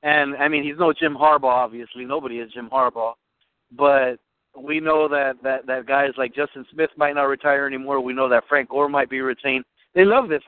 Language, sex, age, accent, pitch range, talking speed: English, male, 30-49, American, 125-145 Hz, 210 wpm